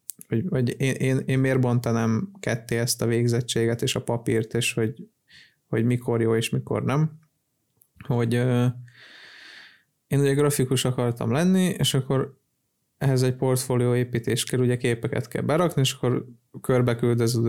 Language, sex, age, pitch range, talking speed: Hungarian, male, 20-39, 115-135 Hz, 150 wpm